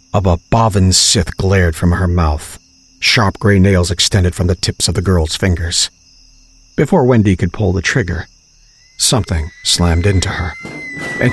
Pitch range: 90-110 Hz